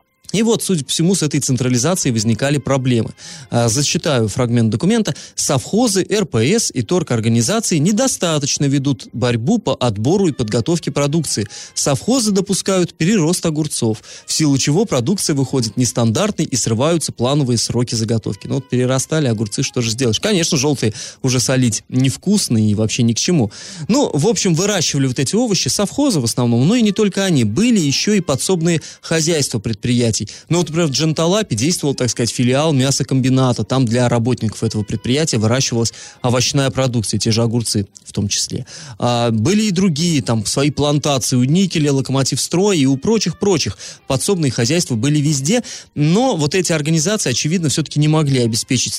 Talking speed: 160 wpm